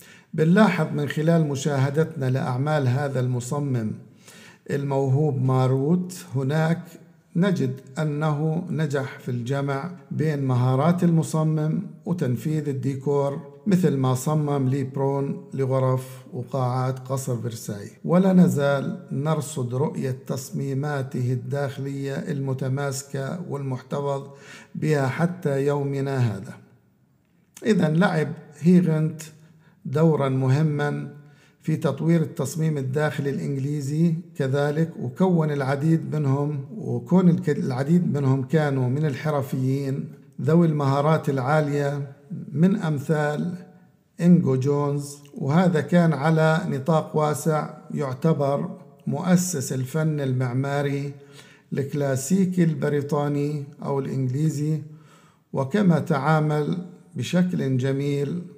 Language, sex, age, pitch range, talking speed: Arabic, male, 50-69, 135-160 Hz, 85 wpm